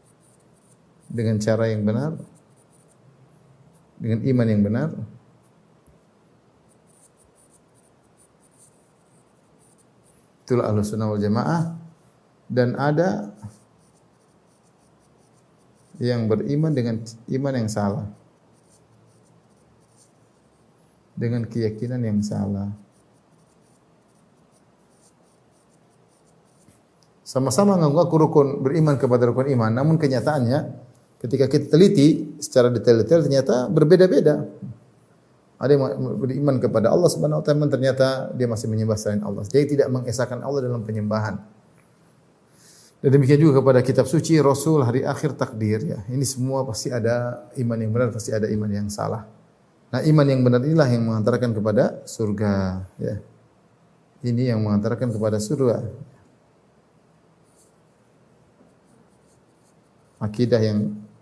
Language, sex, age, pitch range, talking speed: Indonesian, male, 50-69, 110-145 Hz, 95 wpm